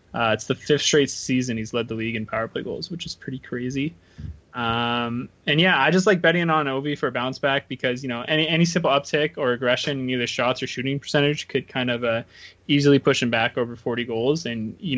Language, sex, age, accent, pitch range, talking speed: English, male, 20-39, American, 120-140 Hz, 235 wpm